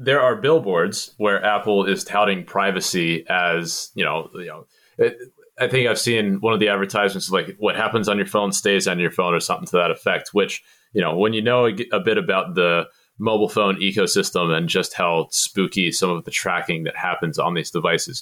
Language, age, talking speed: English, 30-49, 210 wpm